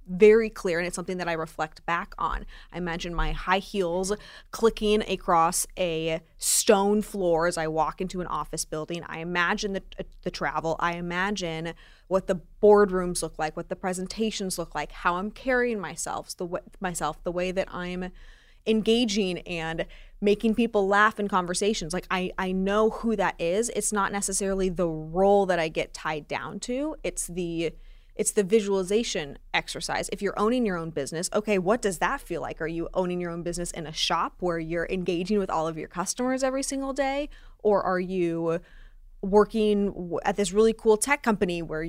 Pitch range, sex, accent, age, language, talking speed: 165-210 Hz, female, American, 20-39, English, 185 wpm